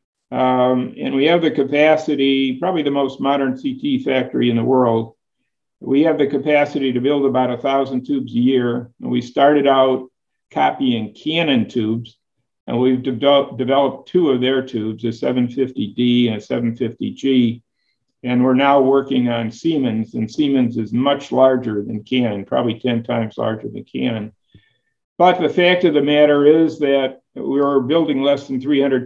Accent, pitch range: American, 120-140 Hz